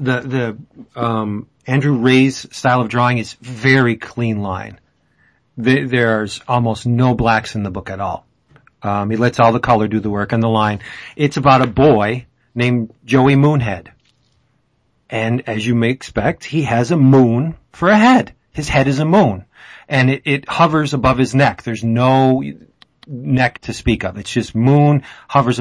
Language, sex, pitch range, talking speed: English, male, 115-135 Hz, 175 wpm